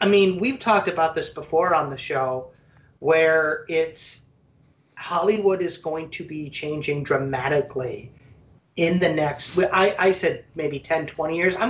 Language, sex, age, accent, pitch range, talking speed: English, male, 30-49, American, 150-210 Hz, 155 wpm